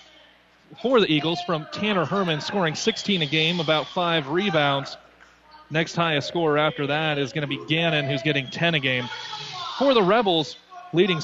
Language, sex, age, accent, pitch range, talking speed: English, male, 30-49, American, 140-180 Hz, 170 wpm